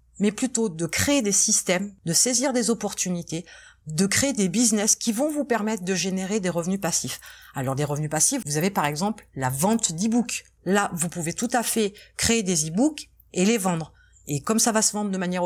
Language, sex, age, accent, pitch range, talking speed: French, female, 30-49, French, 175-230 Hz, 210 wpm